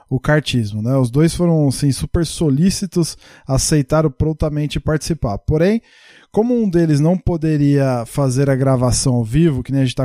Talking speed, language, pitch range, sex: 160 wpm, Portuguese, 135-165 Hz, male